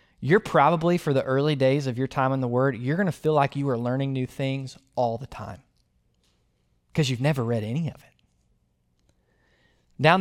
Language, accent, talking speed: English, American, 195 wpm